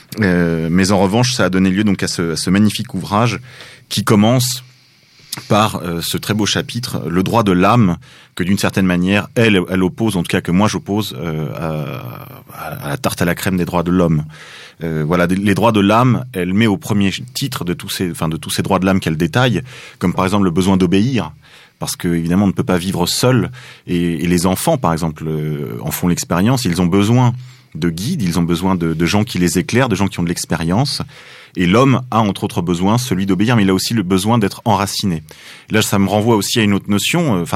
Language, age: French, 30-49